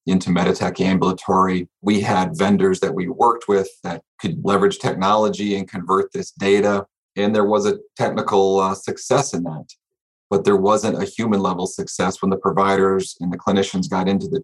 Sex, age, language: male, 30-49, English